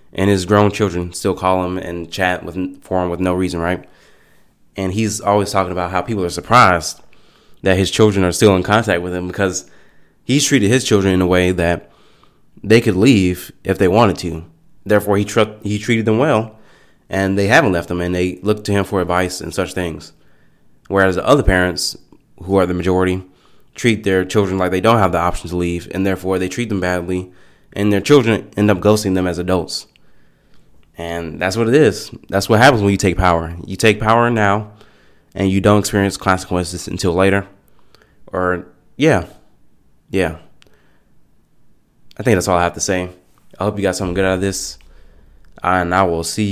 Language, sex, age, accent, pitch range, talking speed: English, male, 20-39, American, 90-105 Hz, 195 wpm